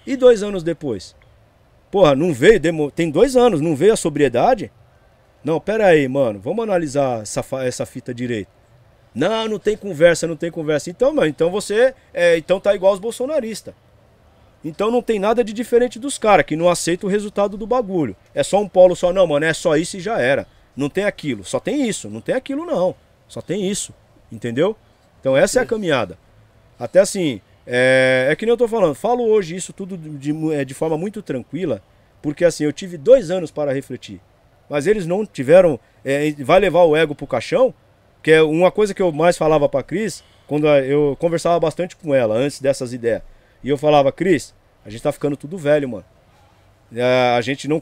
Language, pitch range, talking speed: Portuguese, 125-190 Hz, 200 wpm